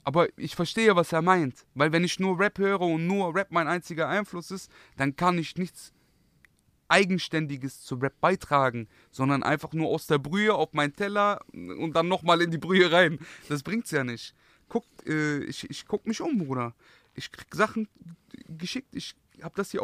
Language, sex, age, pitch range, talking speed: German, male, 30-49, 145-180 Hz, 190 wpm